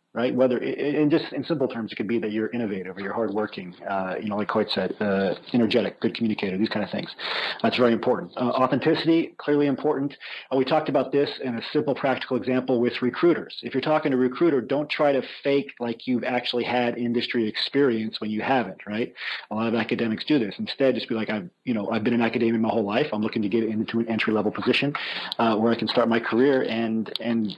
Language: English